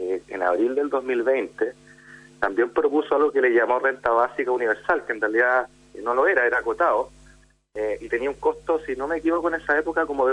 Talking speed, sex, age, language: 210 wpm, male, 30-49, Spanish